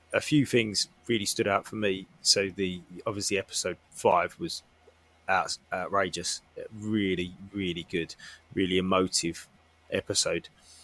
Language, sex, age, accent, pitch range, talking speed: English, male, 20-39, British, 95-120 Hz, 120 wpm